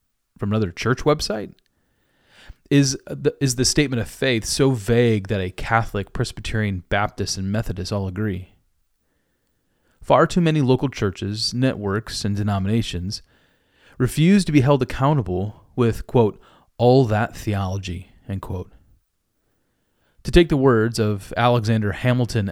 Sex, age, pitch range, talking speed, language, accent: male, 30-49, 95-130 Hz, 130 wpm, English, American